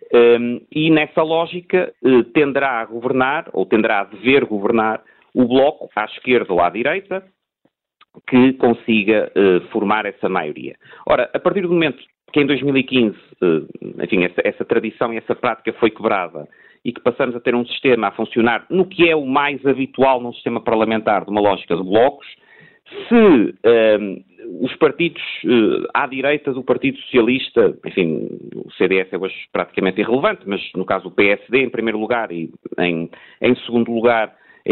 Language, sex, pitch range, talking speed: Portuguese, male, 115-150 Hz, 170 wpm